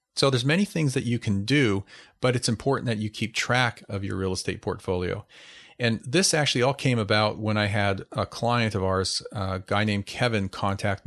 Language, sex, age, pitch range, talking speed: English, male, 40-59, 100-125 Hz, 205 wpm